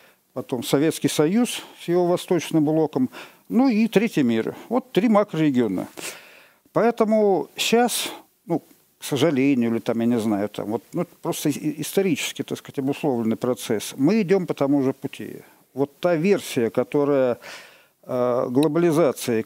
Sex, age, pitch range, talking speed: male, 50-69, 130-190 Hz, 135 wpm